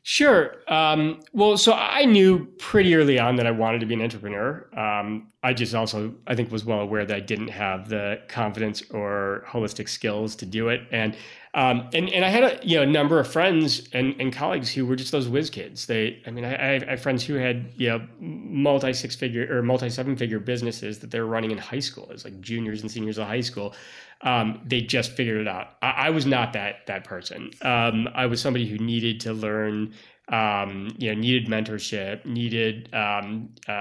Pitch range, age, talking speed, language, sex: 110-130 Hz, 30-49, 210 wpm, English, male